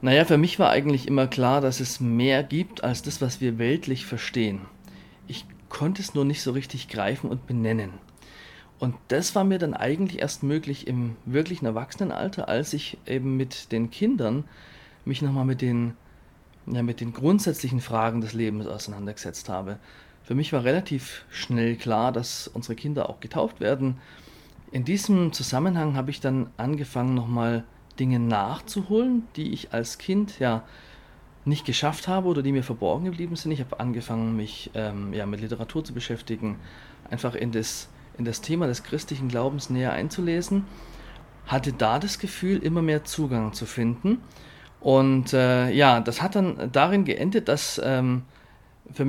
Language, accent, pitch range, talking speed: German, German, 115-155 Hz, 165 wpm